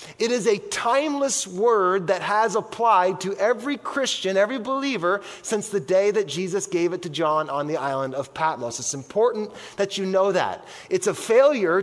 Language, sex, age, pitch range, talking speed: English, male, 30-49, 180-230 Hz, 185 wpm